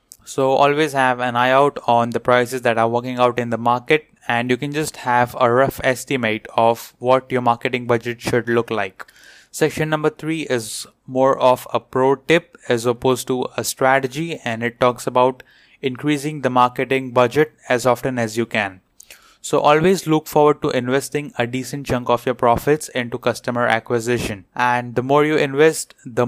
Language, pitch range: English, 120-135 Hz